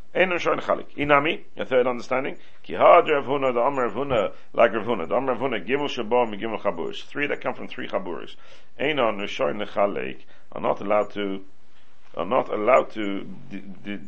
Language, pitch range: English, 110-165 Hz